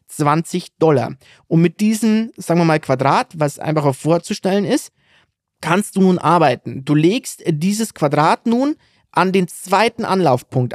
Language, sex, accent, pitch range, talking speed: German, male, German, 145-195 Hz, 150 wpm